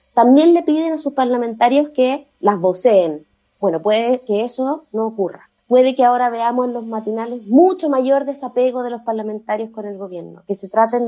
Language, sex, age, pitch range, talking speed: Spanish, female, 20-39, 215-280 Hz, 185 wpm